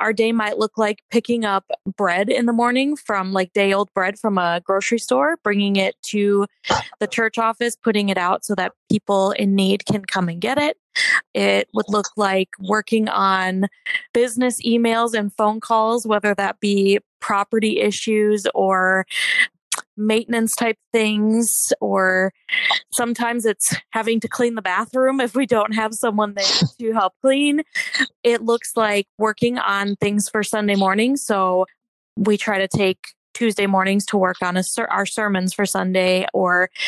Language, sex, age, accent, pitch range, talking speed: English, female, 20-39, American, 195-225 Hz, 165 wpm